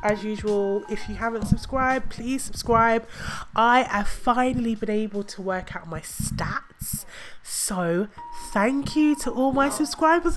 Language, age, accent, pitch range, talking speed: English, 20-39, British, 180-255 Hz, 145 wpm